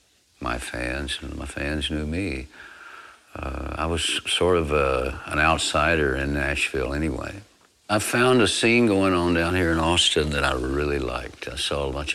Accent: American